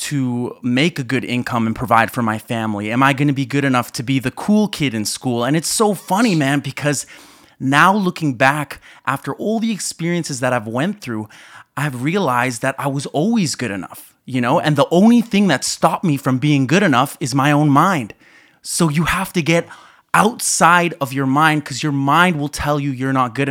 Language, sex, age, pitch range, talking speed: English, male, 30-49, 130-175 Hz, 215 wpm